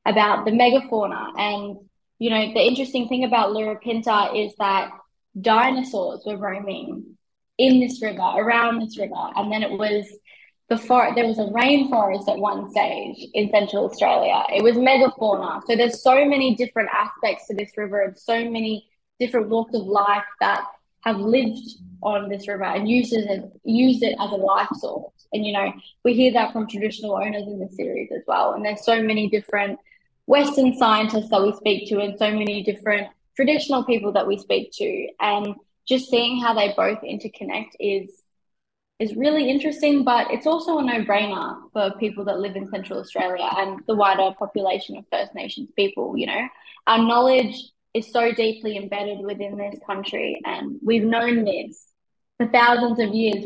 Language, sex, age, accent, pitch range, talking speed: English, female, 10-29, Australian, 205-245 Hz, 175 wpm